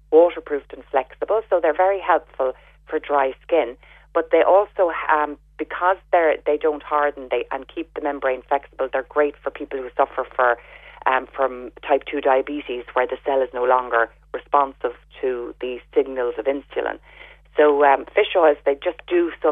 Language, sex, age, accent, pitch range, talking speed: English, female, 30-49, Irish, 135-180 Hz, 175 wpm